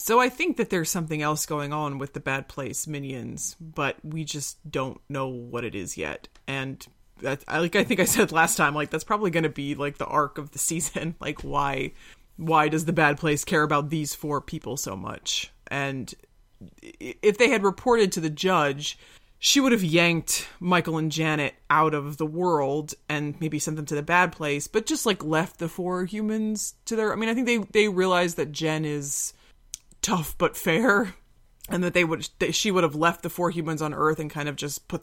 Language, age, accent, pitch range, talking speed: English, 20-39, American, 150-180 Hz, 215 wpm